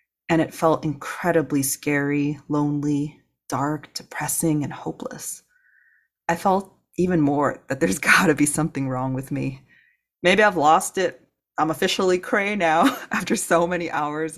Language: English